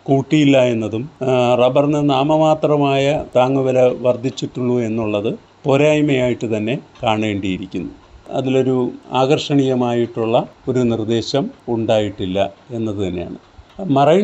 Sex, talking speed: male, 75 wpm